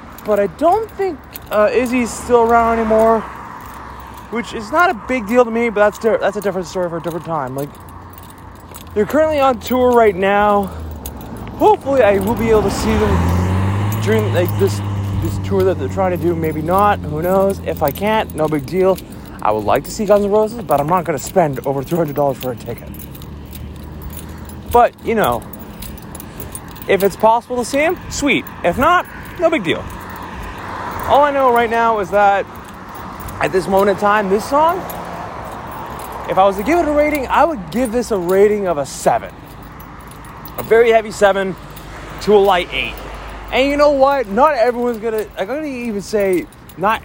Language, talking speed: English, 190 wpm